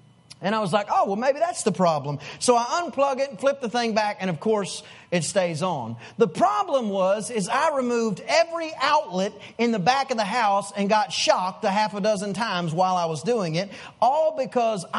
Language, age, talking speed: English, 30-49, 215 wpm